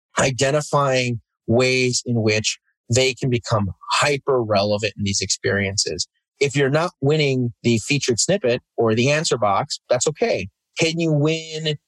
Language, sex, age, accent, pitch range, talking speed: English, male, 30-49, American, 120-150 Hz, 135 wpm